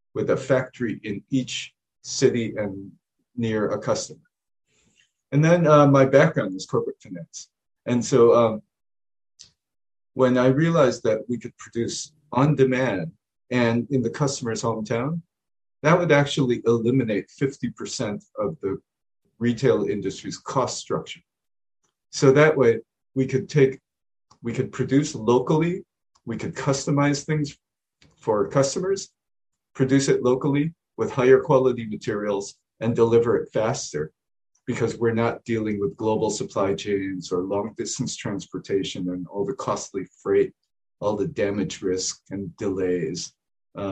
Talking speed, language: 135 wpm, English